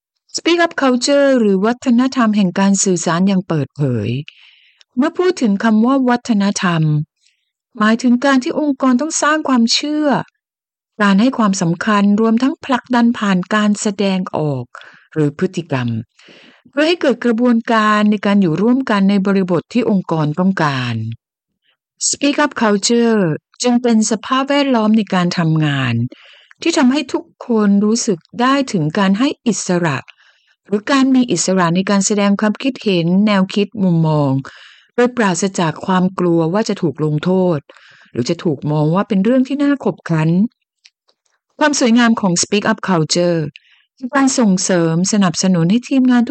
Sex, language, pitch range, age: female, Thai, 170-245 Hz, 60-79